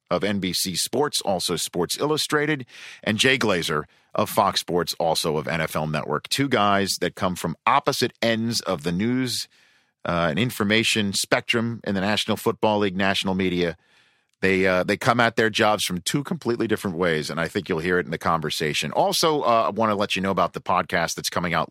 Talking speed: 200 wpm